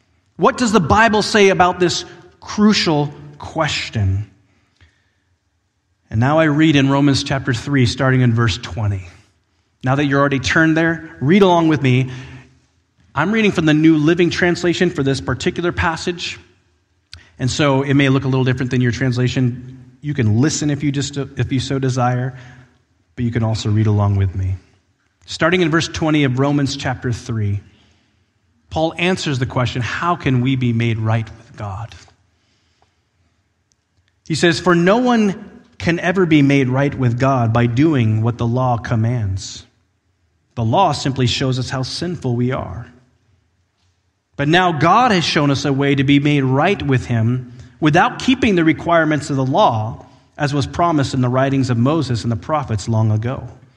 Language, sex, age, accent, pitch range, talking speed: English, male, 30-49, American, 110-150 Hz, 170 wpm